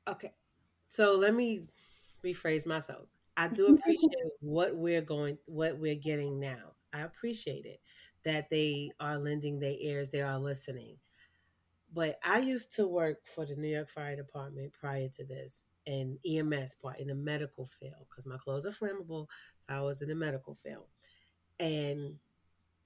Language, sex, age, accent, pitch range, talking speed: English, female, 30-49, American, 140-160 Hz, 165 wpm